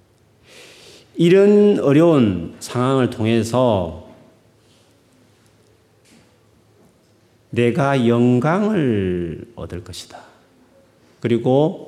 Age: 40-59